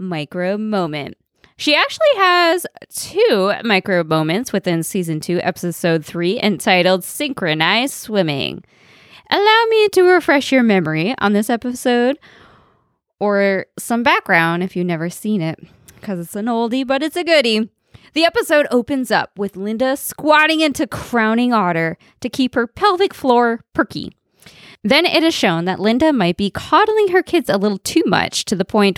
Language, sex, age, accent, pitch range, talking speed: English, female, 20-39, American, 185-290 Hz, 155 wpm